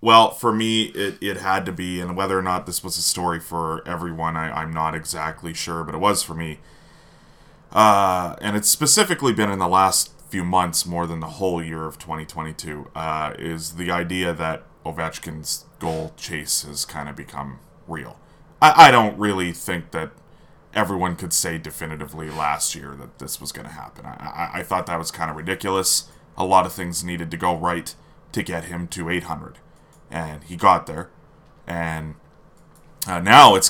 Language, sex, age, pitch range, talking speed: English, male, 20-39, 80-95 Hz, 190 wpm